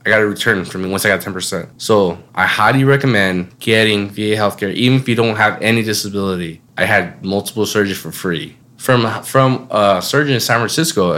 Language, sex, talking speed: English, male, 205 wpm